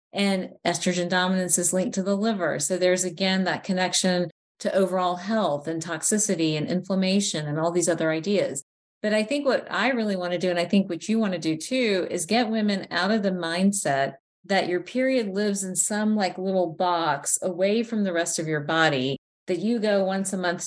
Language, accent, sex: English, American, female